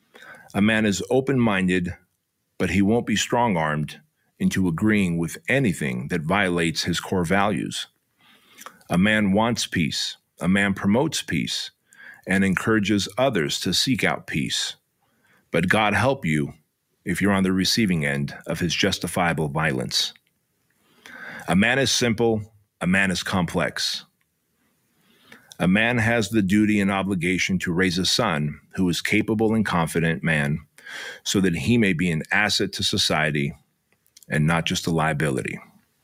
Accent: American